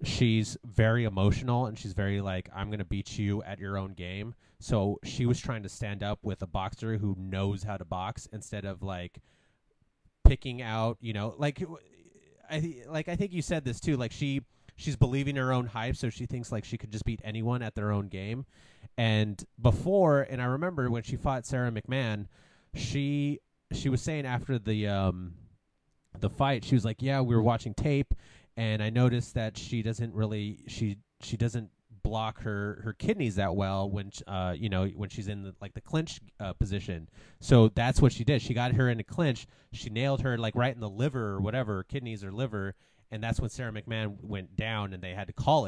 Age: 30-49